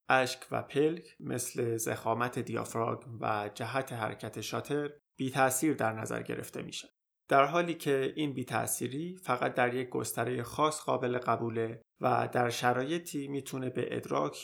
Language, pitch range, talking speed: Persian, 115-140 Hz, 150 wpm